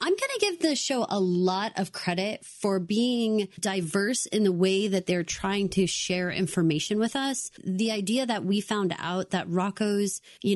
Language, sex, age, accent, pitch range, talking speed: English, female, 30-49, American, 185-225 Hz, 190 wpm